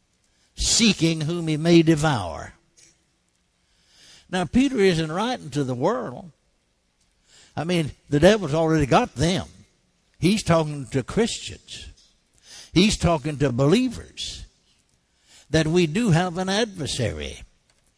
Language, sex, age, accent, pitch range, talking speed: English, male, 60-79, American, 150-200 Hz, 110 wpm